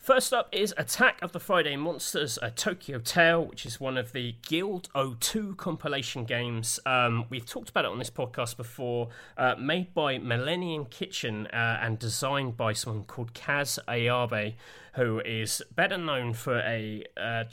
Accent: British